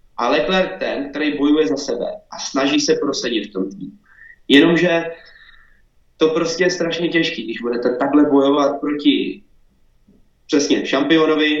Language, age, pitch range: Czech, 20-39, 140-165 Hz